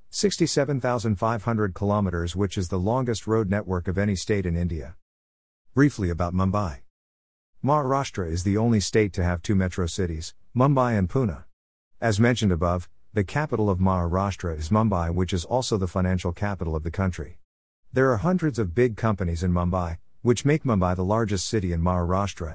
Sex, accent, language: male, American, Marathi